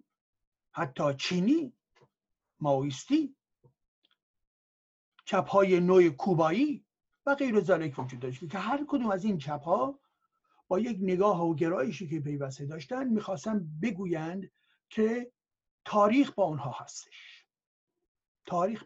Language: Persian